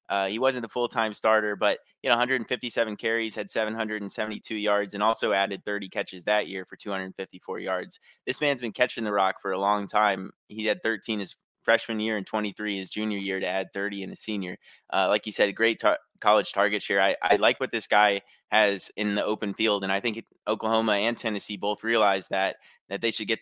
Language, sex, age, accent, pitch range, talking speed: English, male, 30-49, American, 100-115 Hz, 220 wpm